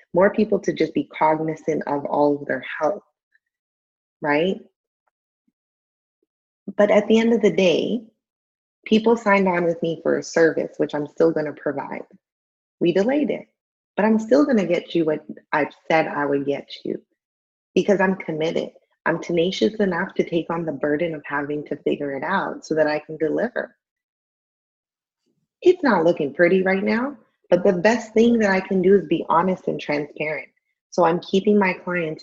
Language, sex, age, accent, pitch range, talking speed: English, female, 20-39, American, 155-210 Hz, 180 wpm